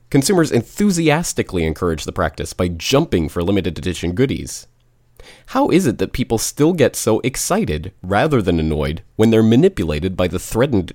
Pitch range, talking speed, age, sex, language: 85-115 Hz, 155 wpm, 30-49, male, English